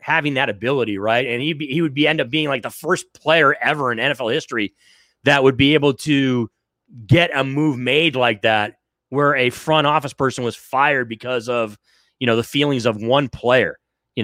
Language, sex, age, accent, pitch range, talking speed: English, male, 30-49, American, 120-145 Hz, 210 wpm